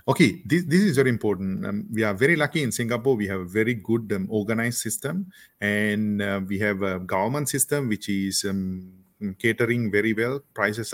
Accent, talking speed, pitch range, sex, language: Indian, 190 wpm, 100-125 Hz, male, English